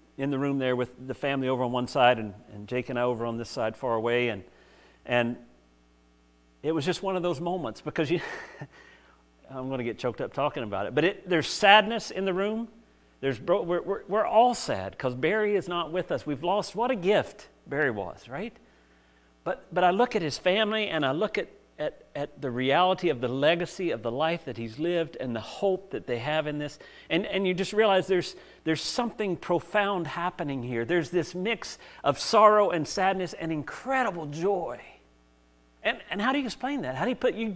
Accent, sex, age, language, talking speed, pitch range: American, male, 50-69, English, 215 wpm, 115-195 Hz